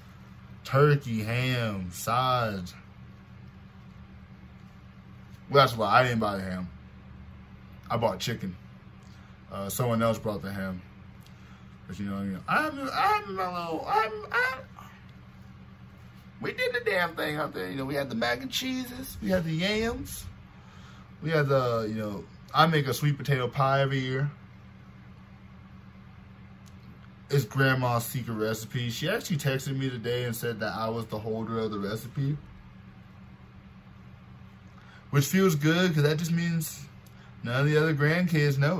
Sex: male